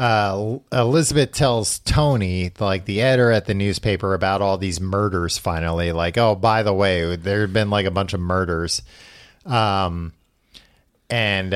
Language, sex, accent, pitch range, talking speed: English, male, American, 90-115 Hz, 155 wpm